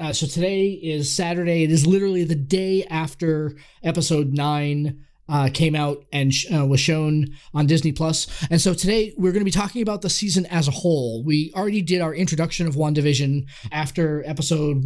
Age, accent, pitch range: 20-39, American, 145-170 Hz